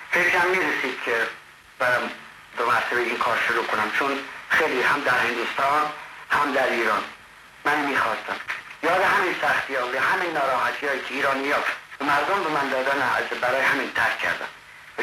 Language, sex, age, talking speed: Persian, male, 50-69, 155 wpm